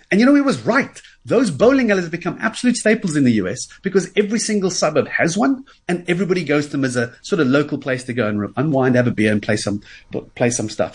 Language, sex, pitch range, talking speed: English, male, 135-210 Hz, 250 wpm